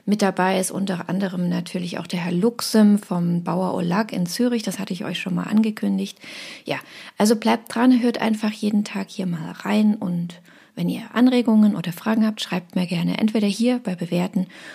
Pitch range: 185-225 Hz